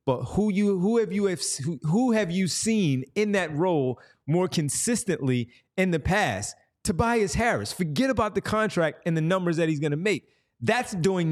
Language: English